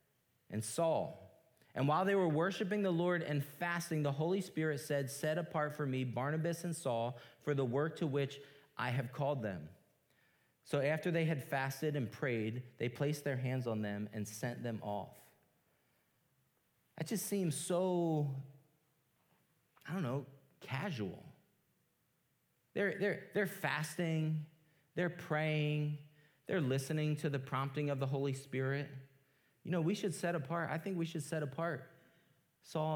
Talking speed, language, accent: 155 wpm, English, American